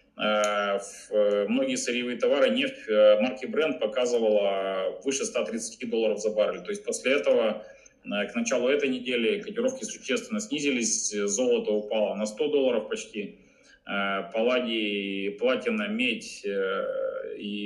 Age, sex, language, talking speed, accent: 20-39, male, Russian, 110 wpm, native